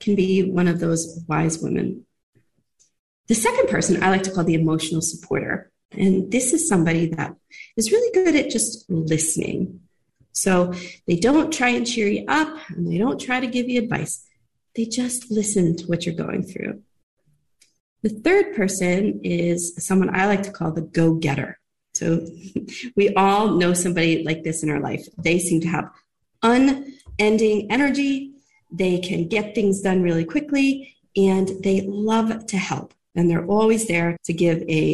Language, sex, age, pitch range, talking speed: English, female, 40-59, 170-235 Hz, 170 wpm